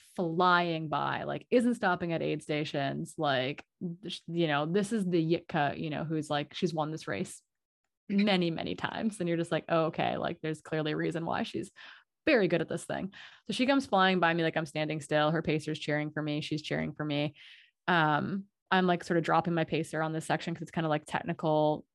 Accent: American